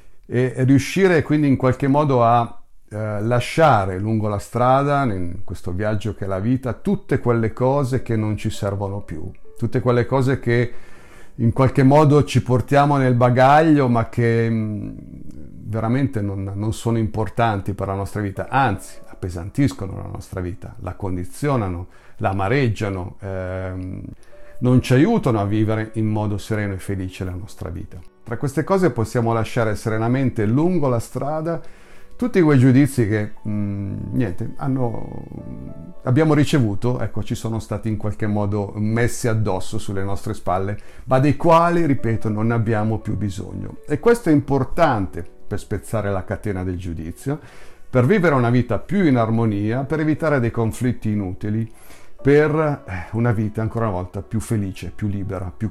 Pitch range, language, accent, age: 100-130 Hz, Italian, native, 50-69